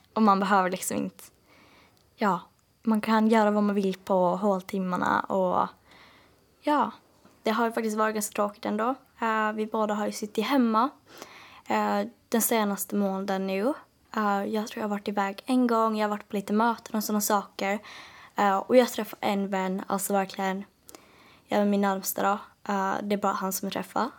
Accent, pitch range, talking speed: Norwegian, 200-225 Hz, 185 wpm